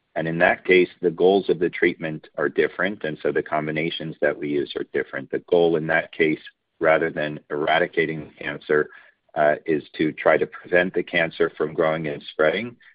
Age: 40-59